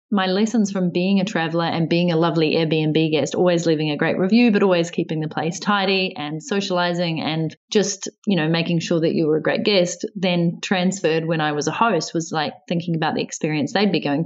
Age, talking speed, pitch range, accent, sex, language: 30-49, 225 wpm, 165-200 Hz, Australian, female, English